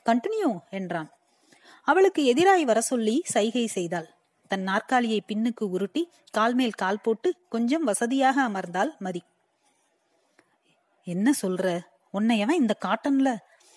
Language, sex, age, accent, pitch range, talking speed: Tamil, female, 30-49, native, 205-280 Hz, 80 wpm